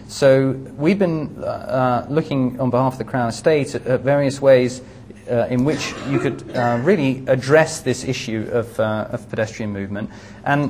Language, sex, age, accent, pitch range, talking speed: English, male, 30-49, British, 110-145 Hz, 175 wpm